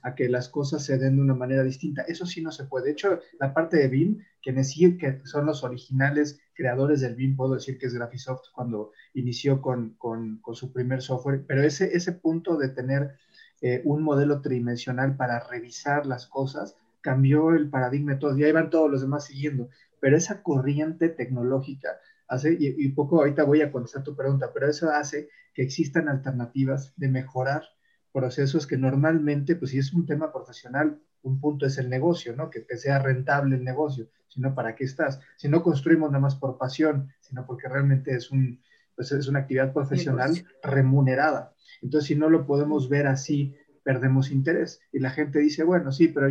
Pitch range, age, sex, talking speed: 130-150 Hz, 30-49, male, 195 wpm